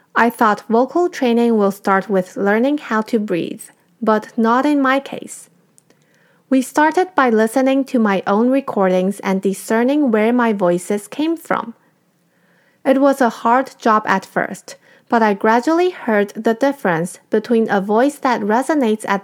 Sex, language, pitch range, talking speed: female, English, 205-260 Hz, 155 wpm